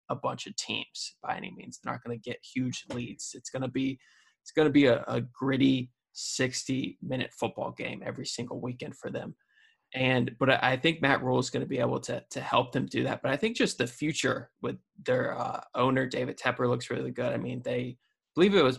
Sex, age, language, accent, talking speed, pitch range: male, 20-39, English, American, 230 wpm, 125-135 Hz